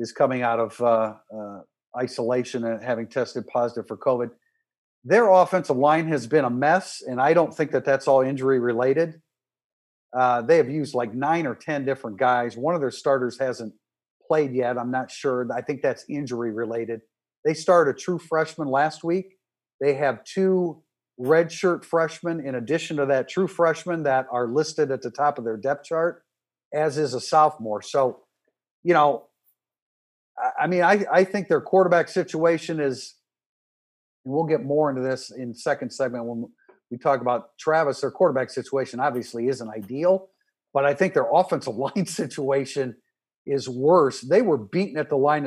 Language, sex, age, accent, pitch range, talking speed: English, male, 50-69, American, 125-165 Hz, 175 wpm